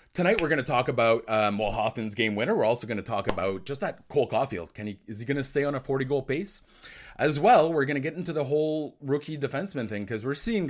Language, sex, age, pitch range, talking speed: English, male, 30-49, 105-165 Hz, 260 wpm